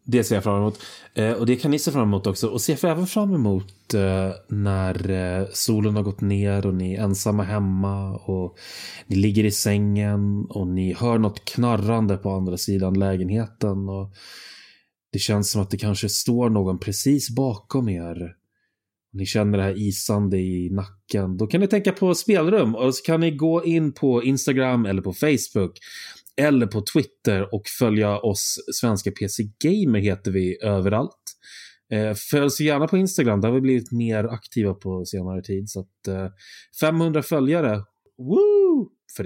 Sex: male